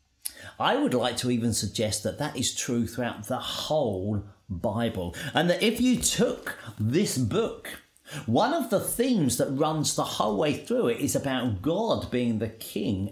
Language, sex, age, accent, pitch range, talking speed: English, male, 50-69, British, 115-160 Hz, 175 wpm